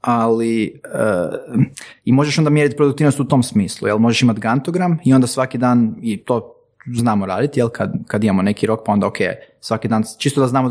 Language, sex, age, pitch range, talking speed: Croatian, male, 20-39, 115-150 Hz, 200 wpm